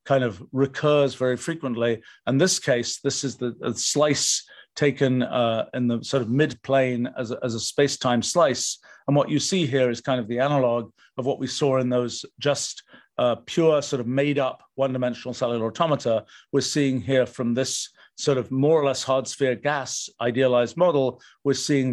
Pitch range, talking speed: 120-140 Hz, 180 wpm